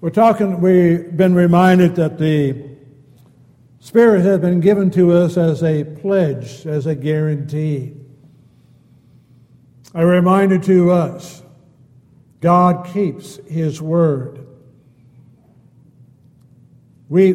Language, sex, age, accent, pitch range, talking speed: English, male, 60-79, American, 130-170 Hz, 95 wpm